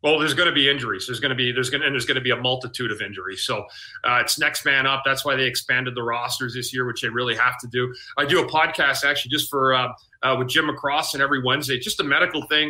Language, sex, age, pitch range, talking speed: English, male, 30-49, 130-160 Hz, 290 wpm